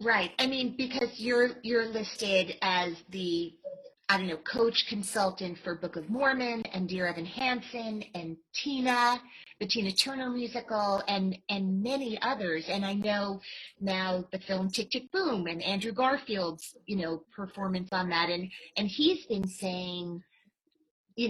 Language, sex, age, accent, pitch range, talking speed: English, female, 30-49, American, 185-245 Hz, 155 wpm